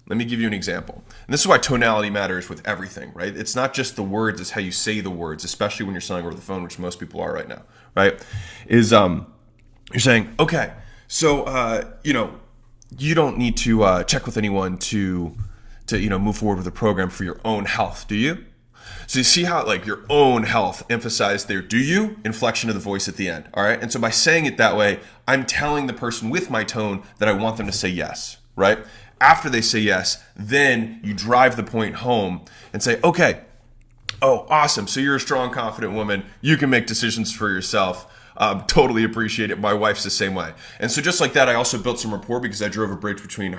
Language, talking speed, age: English, 230 wpm, 20-39